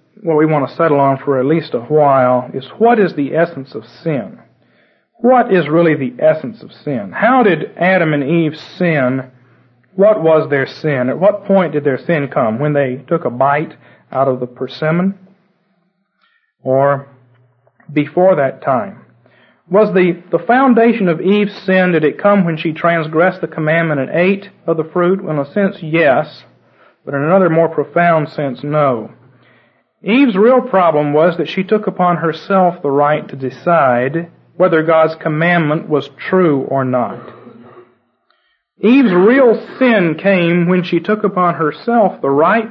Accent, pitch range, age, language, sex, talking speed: American, 145-195 Hz, 40-59, English, male, 165 wpm